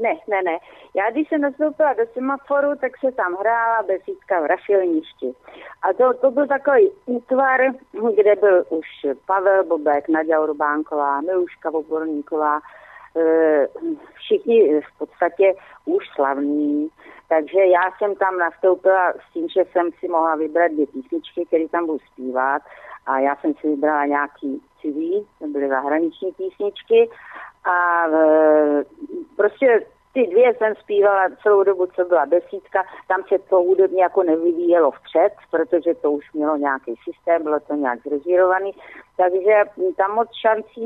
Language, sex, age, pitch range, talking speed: Slovak, female, 40-59, 155-230 Hz, 140 wpm